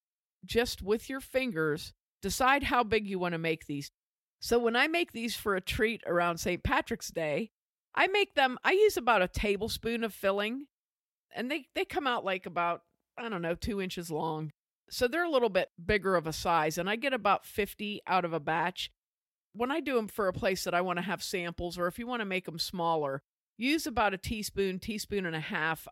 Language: English